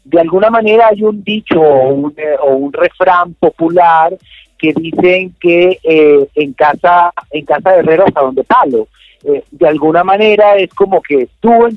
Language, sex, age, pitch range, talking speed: Spanish, male, 50-69, 160-205 Hz, 175 wpm